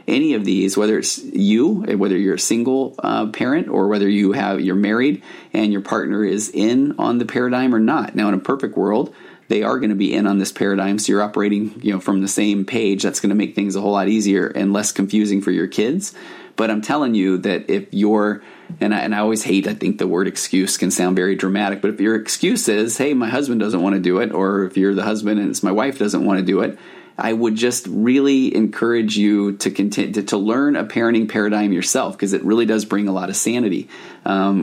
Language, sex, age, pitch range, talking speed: English, male, 30-49, 100-110 Hz, 245 wpm